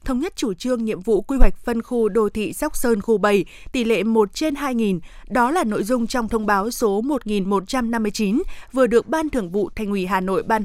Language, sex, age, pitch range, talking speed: Vietnamese, female, 20-39, 210-245 Hz, 225 wpm